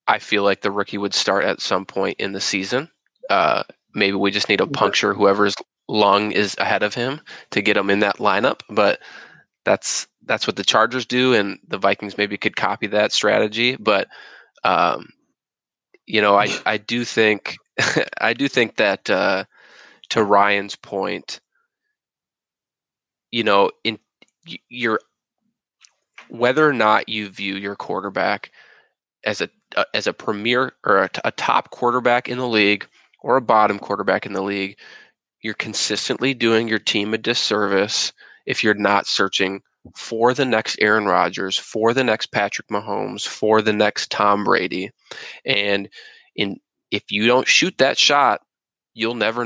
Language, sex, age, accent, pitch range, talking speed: English, male, 20-39, American, 100-120 Hz, 155 wpm